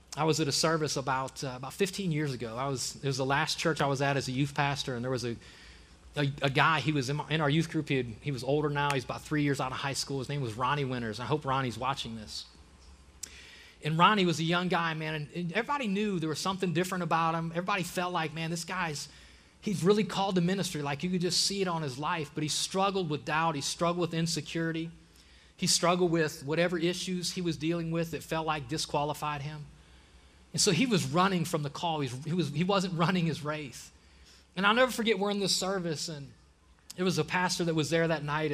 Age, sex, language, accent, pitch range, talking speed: 30-49, male, English, American, 135-180 Hz, 245 wpm